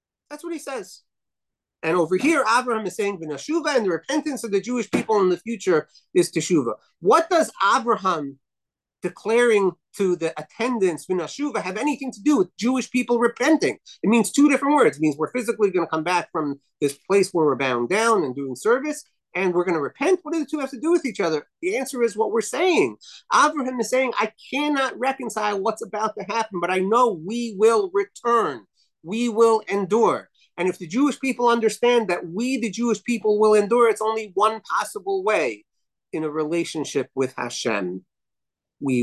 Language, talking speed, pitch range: English, 190 wpm, 150-240 Hz